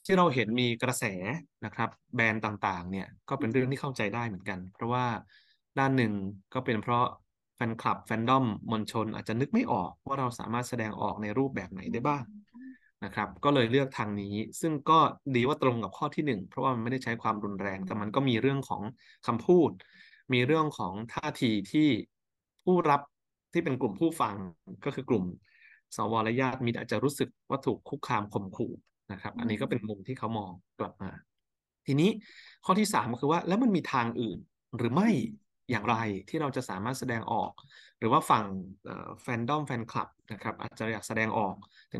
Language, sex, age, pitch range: Thai, male, 20-39, 110-135 Hz